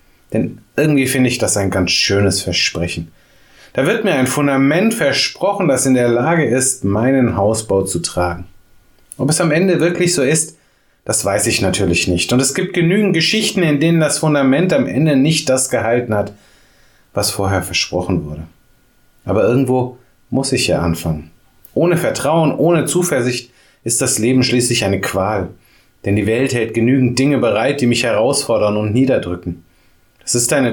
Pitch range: 100-150 Hz